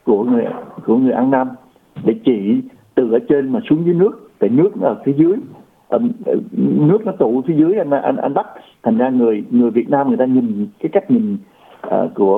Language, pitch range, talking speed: Vietnamese, 140-225 Hz, 210 wpm